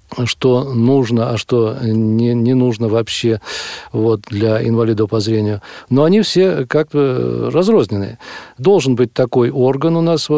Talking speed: 140 wpm